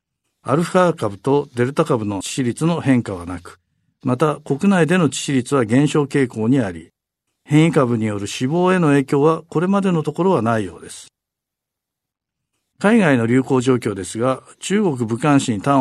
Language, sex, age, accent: Japanese, male, 50-69, native